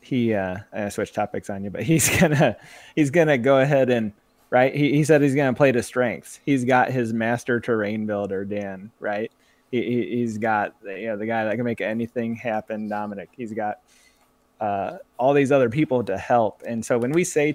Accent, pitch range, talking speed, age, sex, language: American, 110-135 Hz, 200 wpm, 20-39, male, English